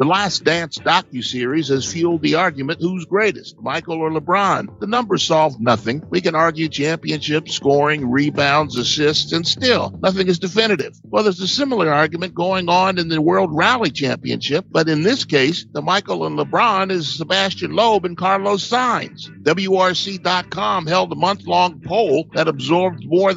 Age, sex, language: 50-69, male, English